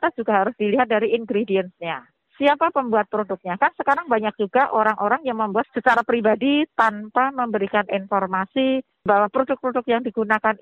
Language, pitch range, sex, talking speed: Indonesian, 200-265 Hz, female, 135 wpm